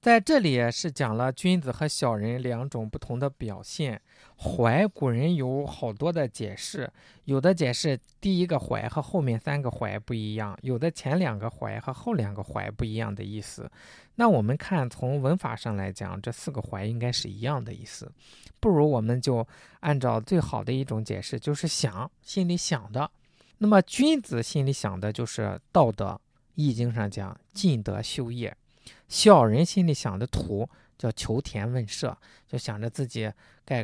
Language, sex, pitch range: Chinese, male, 110-150 Hz